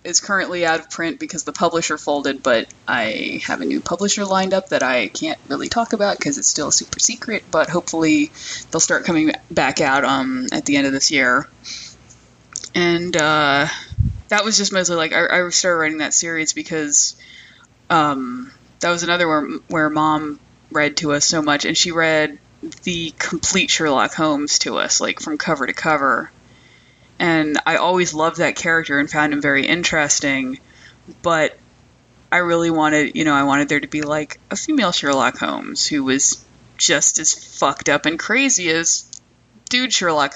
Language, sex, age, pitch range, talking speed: English, female, 20-39, 145-185 Hz, 180 wpm